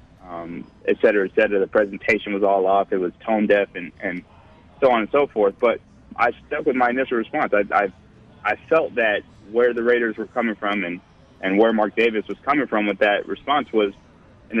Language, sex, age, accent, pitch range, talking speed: English, male, 20-39, American, 100-115 Hz, 215 wpm